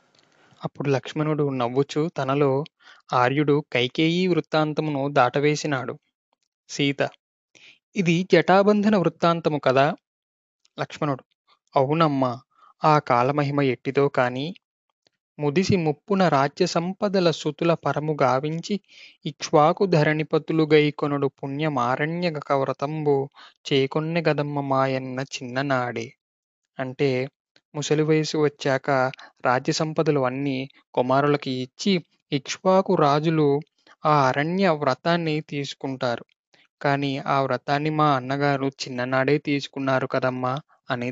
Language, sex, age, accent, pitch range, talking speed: Telugu, male, 20-39, native, 135-165 Hz, 80 wpm